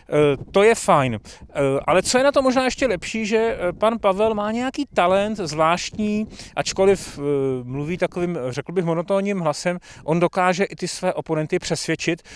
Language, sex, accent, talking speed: Czech, male, native, 155 wpm